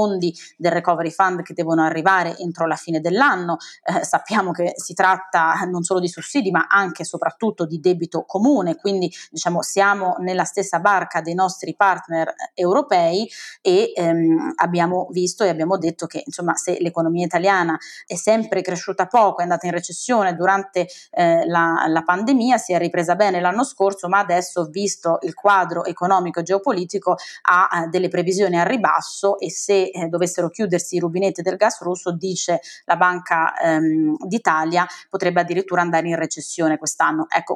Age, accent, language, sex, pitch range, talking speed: 20-39, native, Italian, female, 170-195 Hz, 165 wpm